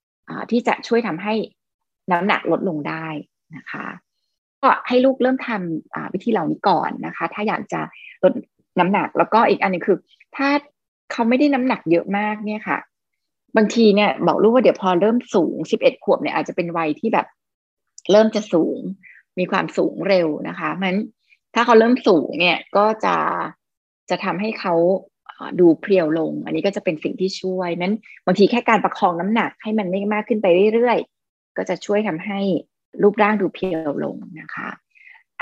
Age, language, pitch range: 20-39, Thai, 180-235 Hz